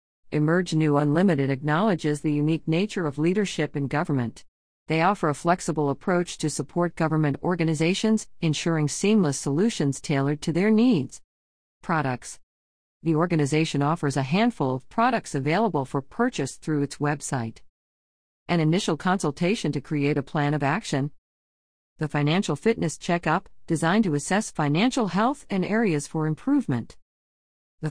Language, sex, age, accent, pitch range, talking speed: English, female, 40-59, American, 145-185 Hz, 140 wpm